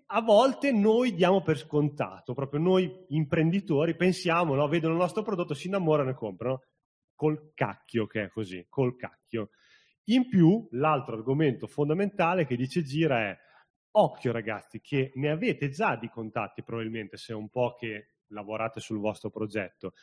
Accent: native